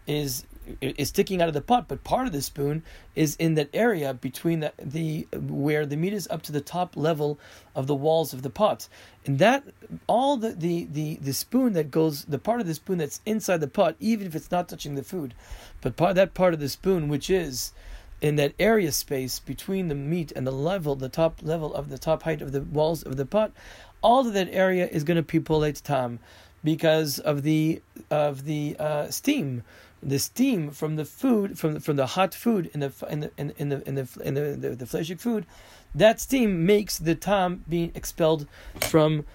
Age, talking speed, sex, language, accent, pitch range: 40-59, 220 wpm, male, English, American, 140-180 Hz